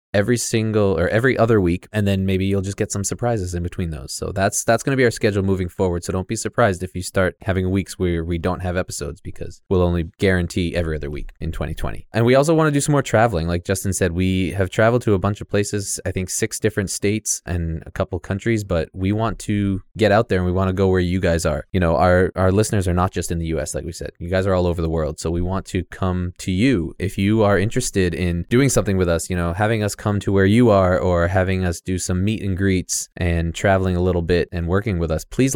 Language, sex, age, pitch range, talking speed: English, male, 20-39, 85-105 Hz, 270 wpm